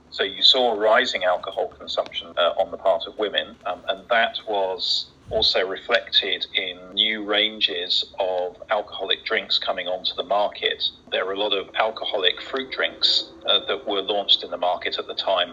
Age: 40-59